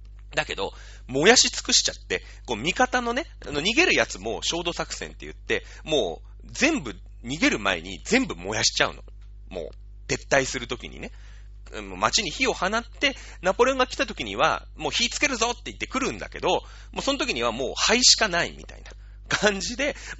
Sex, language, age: male, Japanese, 30-49